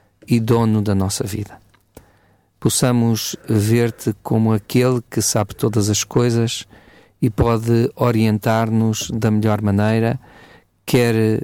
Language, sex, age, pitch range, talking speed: Portuguese, male, 40-59, 105-115 Hz, 110 wpm